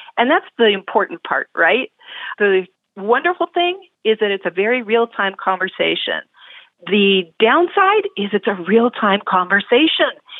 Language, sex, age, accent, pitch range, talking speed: English, female, 40-59, American, 195-250 Hz, 135 wpm